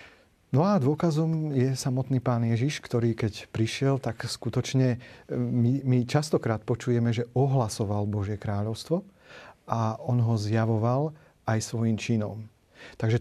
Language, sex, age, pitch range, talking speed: Slovak, male, 40-59, 115-135 Hz, 125 wpm